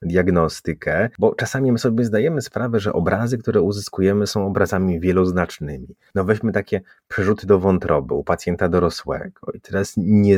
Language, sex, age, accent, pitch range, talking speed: Polish, male, 30-49, native, 85-105 Hz, 150 wpm